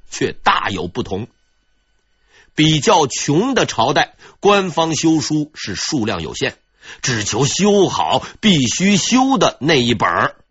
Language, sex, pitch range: Chinese, male, 120-200 Hz